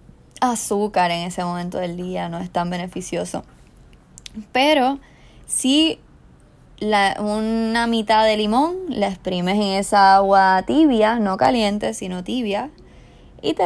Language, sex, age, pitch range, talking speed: Spanish, female, 20-39, 175-220 Hz, 125 wpm